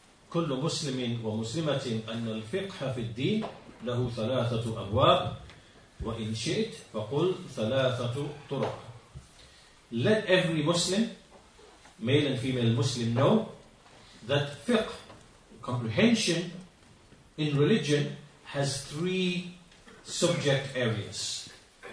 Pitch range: 115-155 Hz